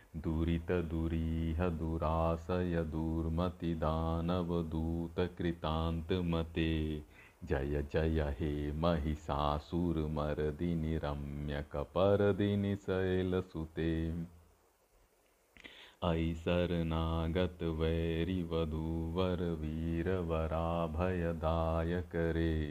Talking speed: 35 wpm